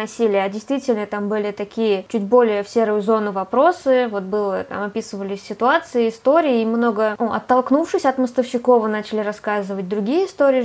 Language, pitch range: Russian, 220-260 Hz